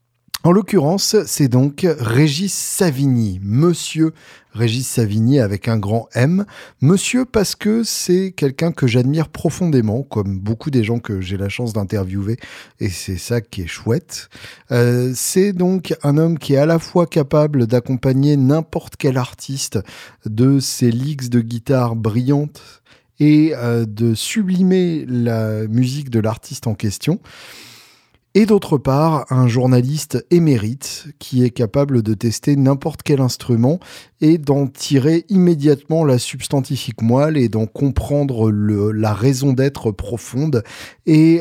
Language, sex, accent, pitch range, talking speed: French, male, French, 115-155 Hz, 140 wpm